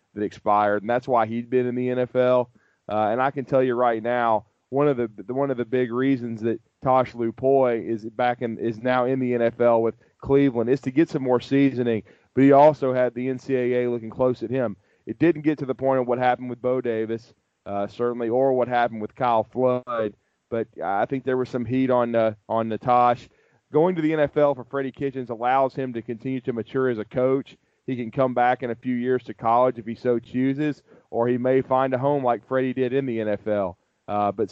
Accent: American